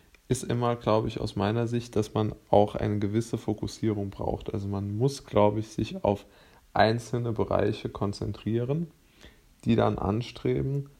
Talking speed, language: 145 wpm, German